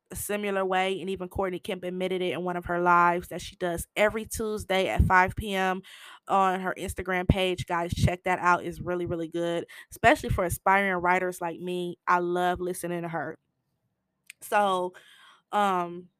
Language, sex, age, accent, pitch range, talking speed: English, female, 20-39, American, 175-205 Hz, 175 wpm